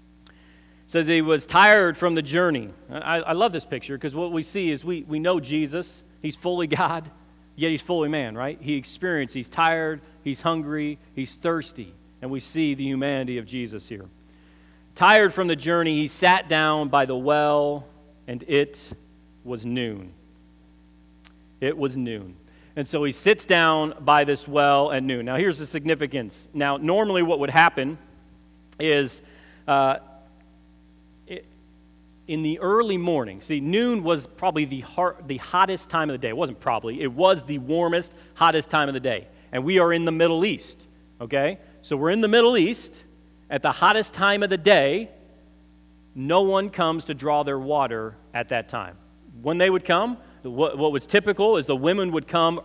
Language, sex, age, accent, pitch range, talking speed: English, male, 40-59, American, 120-170 Hz, 175 wpm